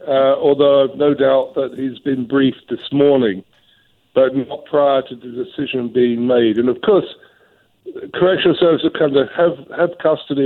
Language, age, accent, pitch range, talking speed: English, 50-69, British, 125-145 Hz, 160 wpm